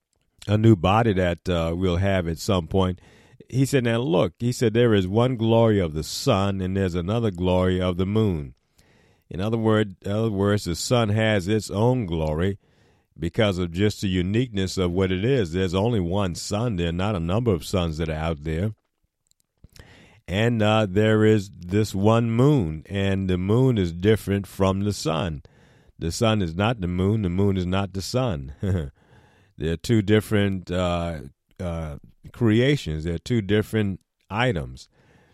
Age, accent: 50-69, American